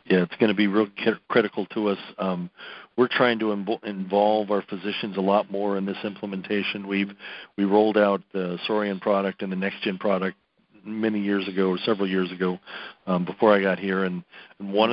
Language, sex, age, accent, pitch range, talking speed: English, male, 50-69, American, 95-105 Hz, 200 wpm